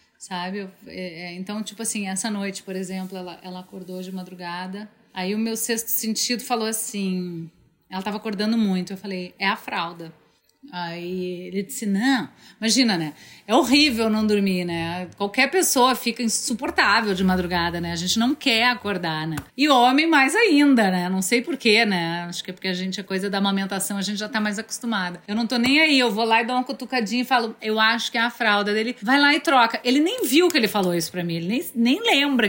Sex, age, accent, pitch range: female, 30-49, Brazilian, 185-245 Hz